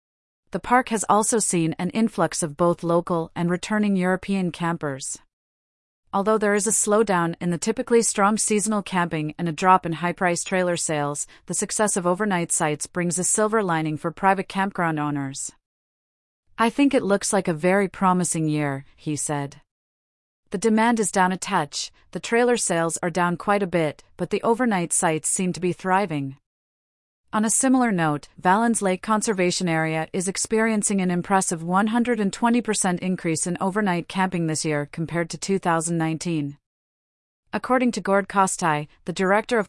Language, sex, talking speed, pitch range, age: English, female, 160 wpm, 170-205 Hz, 30-49